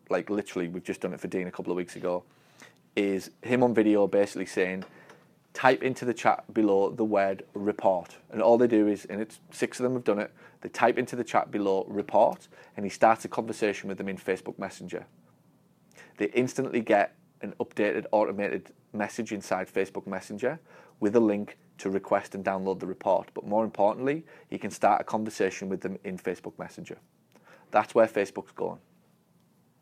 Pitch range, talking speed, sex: 100-120 Hz, 185 wpm, male